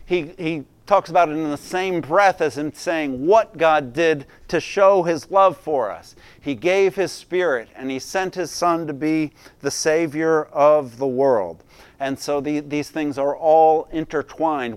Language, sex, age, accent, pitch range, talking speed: English, male, 50-69, American, 145-180 Hz, 180 wpm